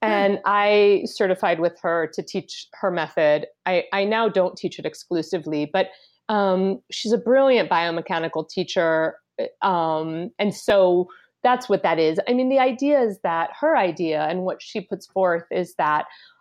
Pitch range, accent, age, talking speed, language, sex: 155-200 Hz, American, 30-49, 165 wpm, English, female